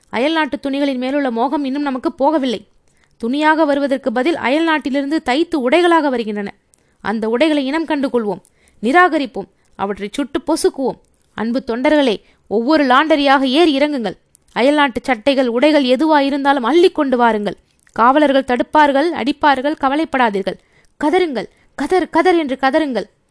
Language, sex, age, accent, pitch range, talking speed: Tamil, female, 20-39, native, 245-310 Hz, 110 wpm